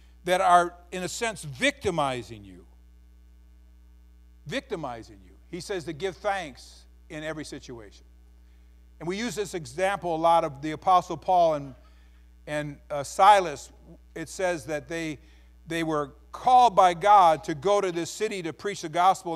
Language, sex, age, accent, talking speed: English, male, 50-69, American, 155 wpm